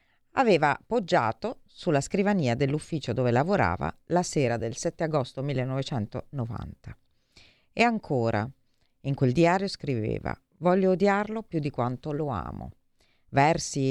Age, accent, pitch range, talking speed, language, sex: 40-59, native, 125-160 Hz, 115 wpm, Italian, female